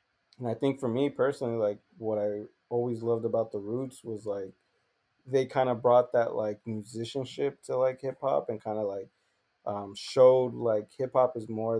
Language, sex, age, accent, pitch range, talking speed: English, male, 20-39, American, 100-125 Hz, 180 wpm